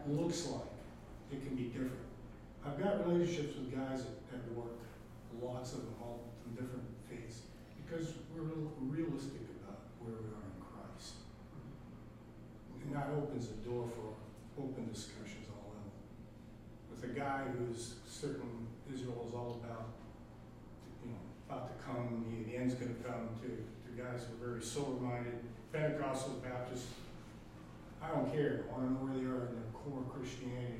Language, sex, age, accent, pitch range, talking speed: English, male, 40-59, American, 115-140 Hz, 165 wpm